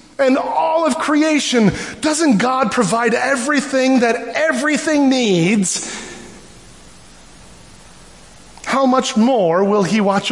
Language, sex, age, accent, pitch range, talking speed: English, male, 30-49, American, 185-285 Hz, 100 wpm